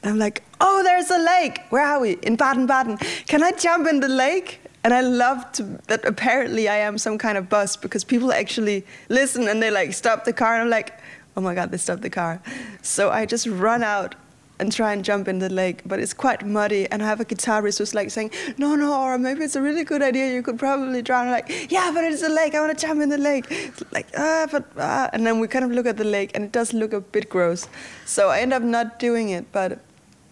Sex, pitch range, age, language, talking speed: female, 195-255 Hz, 20-39, German, 245 wpm